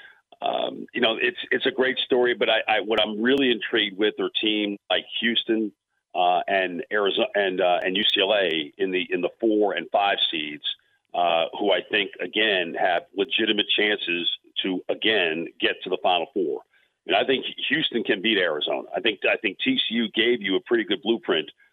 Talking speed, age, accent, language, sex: 190 wpm, 50-69, American, English, male